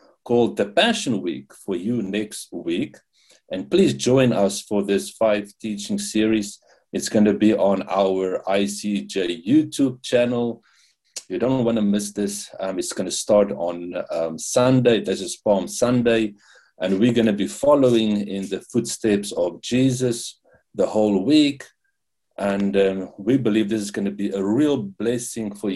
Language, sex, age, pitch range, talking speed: English, male, 50-69, 95-120 Hz, 165 wpm